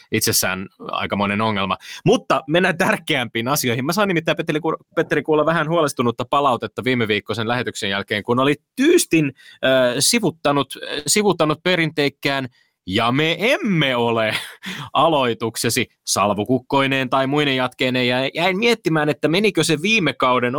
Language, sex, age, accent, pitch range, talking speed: Finnish, male, 20-39, native, 115-155 Hz, 130 wpm